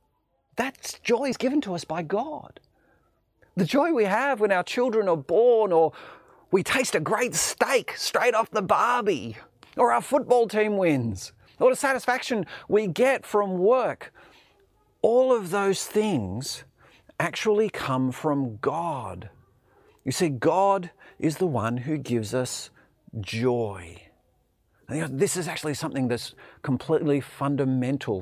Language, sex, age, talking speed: English, male, 40-59, 140 wpm